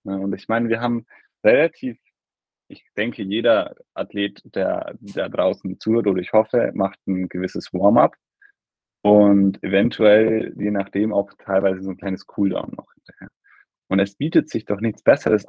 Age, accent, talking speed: 20-39, German, 155 wpm